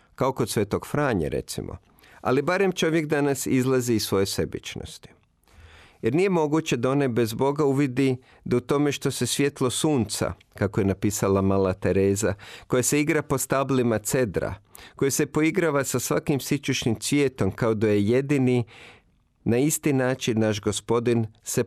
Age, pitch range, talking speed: 50-69, 105-140 Hz, 150 wpm